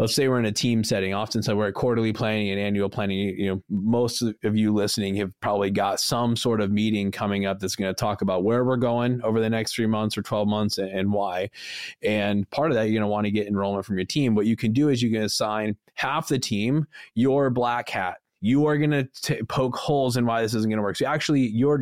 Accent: American